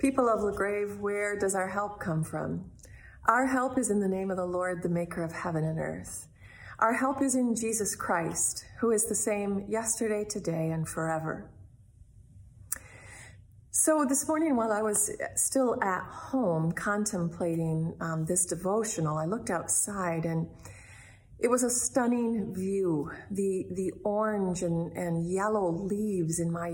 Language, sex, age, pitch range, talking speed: English, female, 40-59, 165-215 Hz, 155 wpm